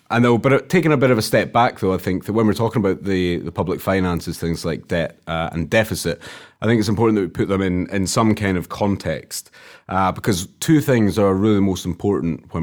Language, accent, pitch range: English, British, 85-110 Hz